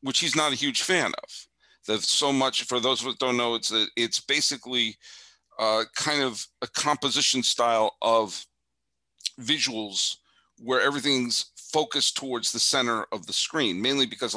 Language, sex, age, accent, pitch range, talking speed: English, male, 50-69, American, 105-130 Hz, 160 wpm